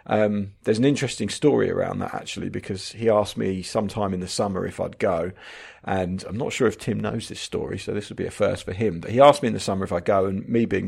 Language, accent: English, British